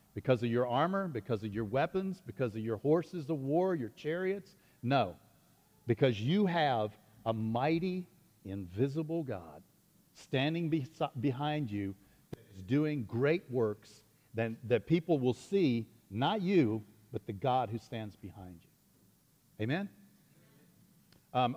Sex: male